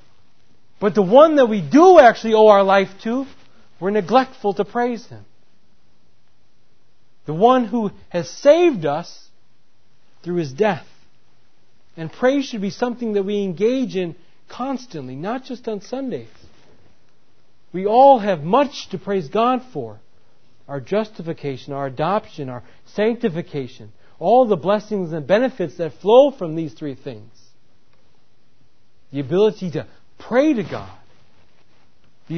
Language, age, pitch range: English, 40-59, 145-230 Hz